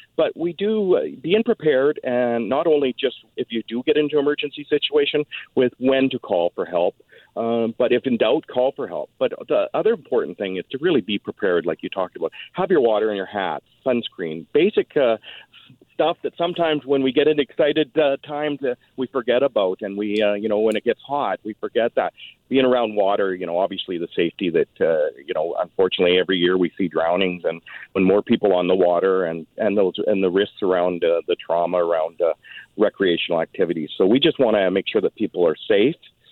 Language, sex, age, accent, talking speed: English, male, 50-69, American, 215 wpm